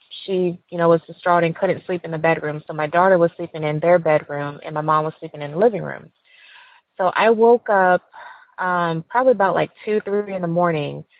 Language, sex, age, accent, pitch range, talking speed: English, female, 20-39, American, 165-190 Hz, 220 wpm